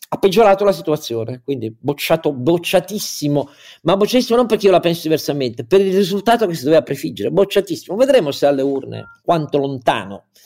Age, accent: 50-69, native